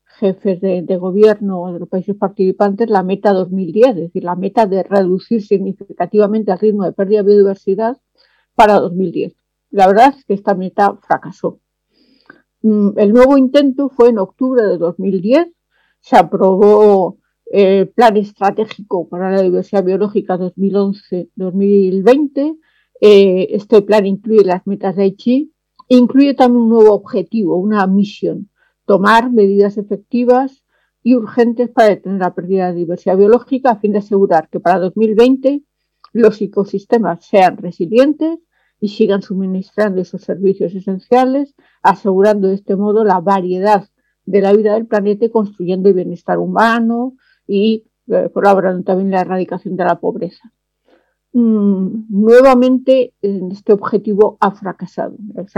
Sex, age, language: female, 50-69, Spanish